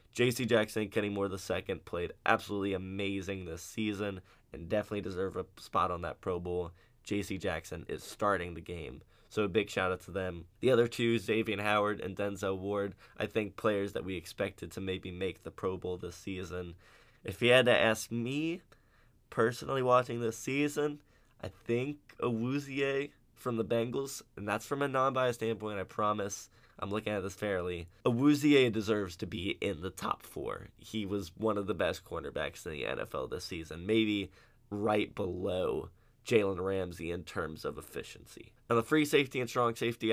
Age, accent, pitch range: 20-39, American, 95-115 Hz